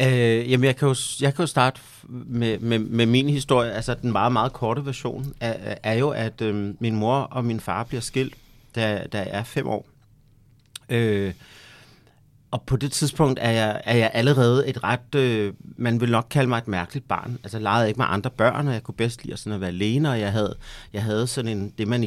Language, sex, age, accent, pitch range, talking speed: Danish, male, 30-49, native, 110-130 Hz, 230 wpm